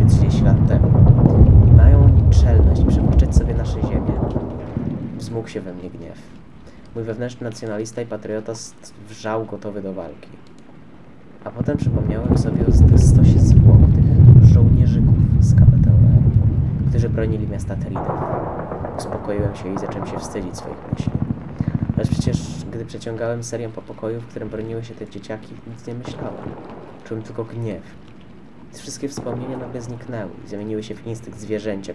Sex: male